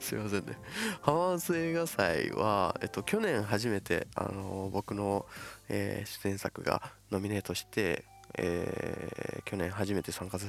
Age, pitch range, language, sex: 20-39, 90-105 Hz, Japanese, male